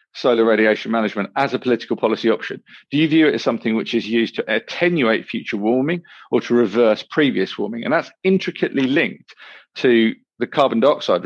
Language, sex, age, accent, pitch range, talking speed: English, male, 40-59, British, 115-140 Hz, 180 wpm